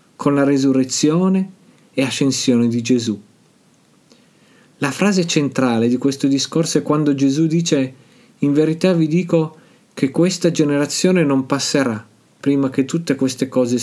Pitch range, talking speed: 135-175 Hz, 135 wpm